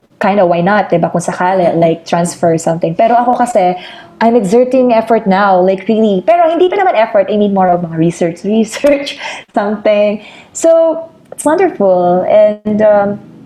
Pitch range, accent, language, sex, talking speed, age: 185-255 Hz, Filipino, English, female, 145 wpm, 20-39